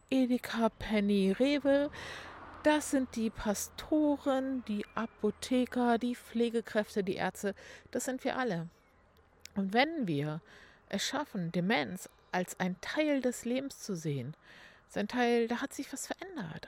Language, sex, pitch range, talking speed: German, female, 190-255 Hz, 135 wpm